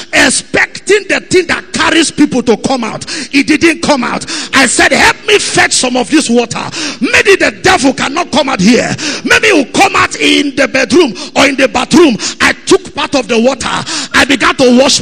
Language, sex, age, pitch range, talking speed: English, male, 50-69, 240-335 Hz, 200 wpm